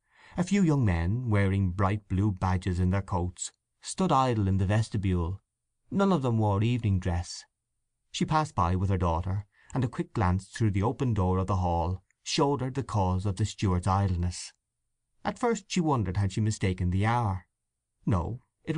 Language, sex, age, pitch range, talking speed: English, male, 30-49, 95-125 Hz, 185 wpm